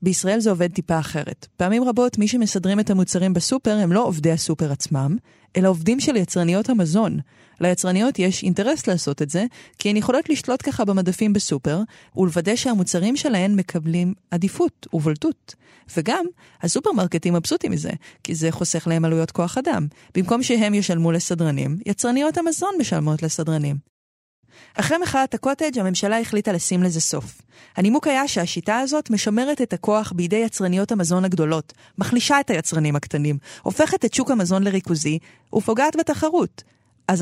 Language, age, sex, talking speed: Hebrew, 30-49, female, 145 wpm